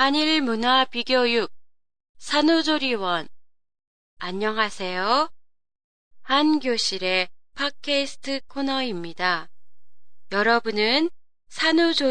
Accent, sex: Korean, female